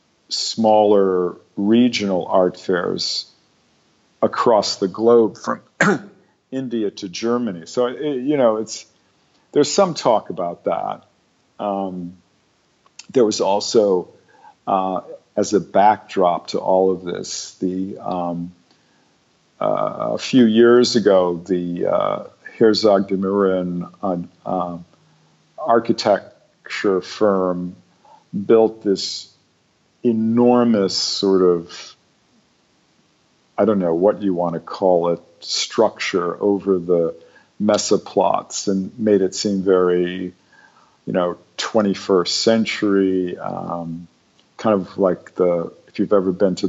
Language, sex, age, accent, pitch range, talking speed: English, male, 50-69, American, 90-105 Hz, 105 wpm